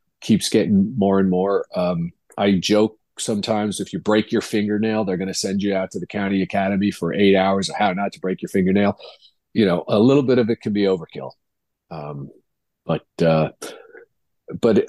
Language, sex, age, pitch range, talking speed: English, male, 40-59, 90-105 Hz, 195 wpm